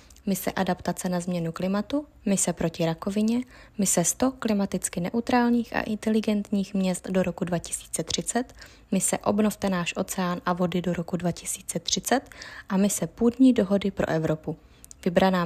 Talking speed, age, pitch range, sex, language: 130 wpm, 20-39, 175-215 Hz, female, Czech